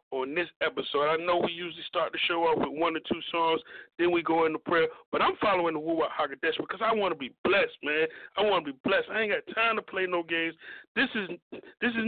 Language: English